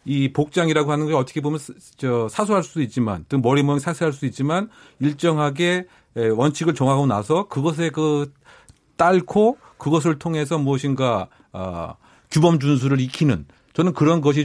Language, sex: Korean, male